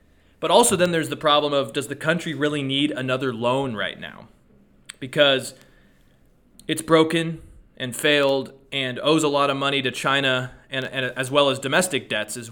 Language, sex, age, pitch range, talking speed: English, male, 20-39, 120-145 Hz, 175 wpm